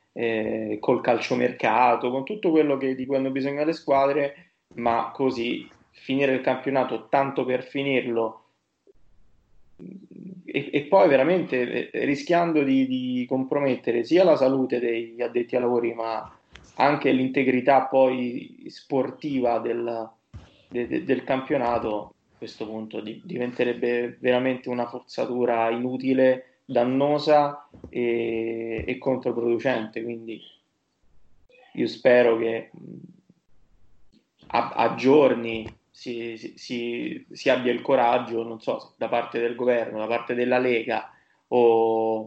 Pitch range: 115-135 Hz